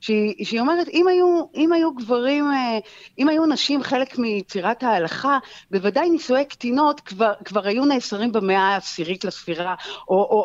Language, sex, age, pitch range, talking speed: Hebrew, female, 50-69, 185-260 Hz, 145 wpm